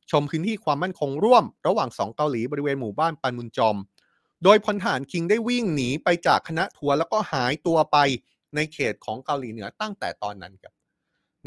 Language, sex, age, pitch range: Thai, male, 20-39, 125-170 Hz